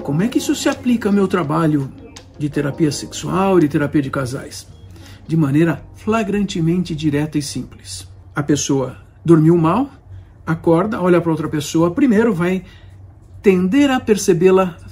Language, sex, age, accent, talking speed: Portuguese, male, 60-79, Brazilian, 145 wpm